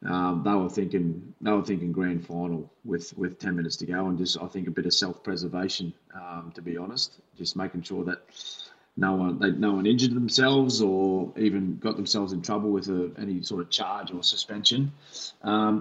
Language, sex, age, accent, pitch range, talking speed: English, male, 20-39, Australian, 90-110 Hz, 205 wpm